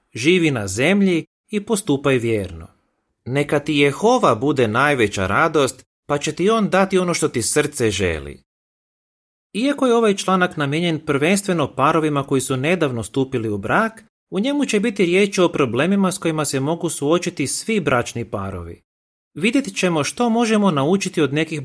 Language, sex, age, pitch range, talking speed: Croatian, male, 30-49, 125-185 Hz, 160 wpm